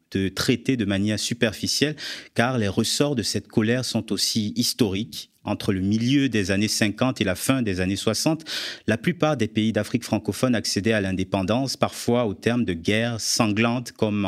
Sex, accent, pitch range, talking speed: male, French, 100-125 Hz, 175 wpm